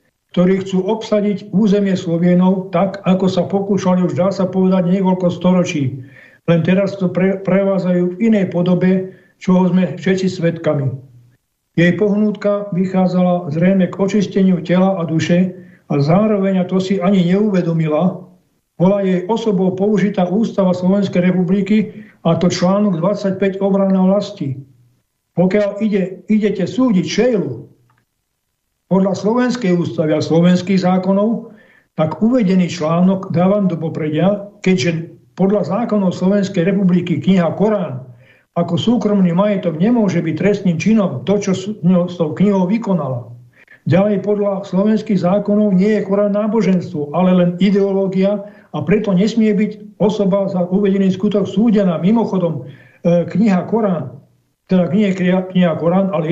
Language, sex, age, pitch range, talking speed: Slovak, male, 60-79, 175-200 Hz, 130 wpm